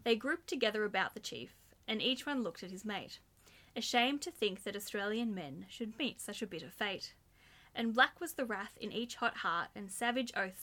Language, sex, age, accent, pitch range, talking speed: English, female, 10-29, Australian, 200-245 Hz, 210 wpm